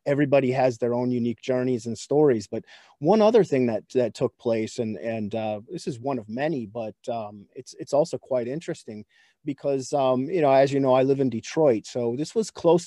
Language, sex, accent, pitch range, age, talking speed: English, male, American, 120-140 Hz, 30-49, 215 wpm